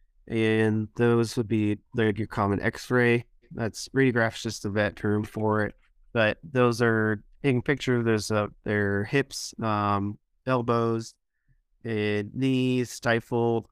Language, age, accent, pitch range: English, 30-49, American, 105-120 Hz